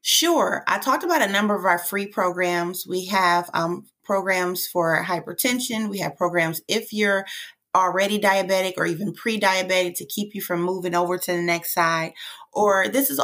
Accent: American